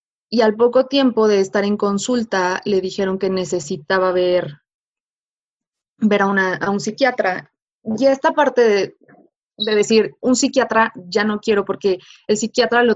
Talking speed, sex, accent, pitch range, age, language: 155 wpm, female, Mexican, 180-220 Hz, 20-39, Spanish